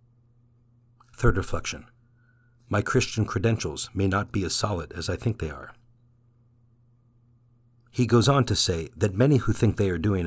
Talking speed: 160 wpm